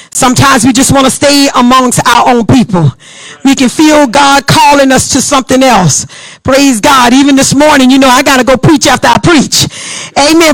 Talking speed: 195 wpm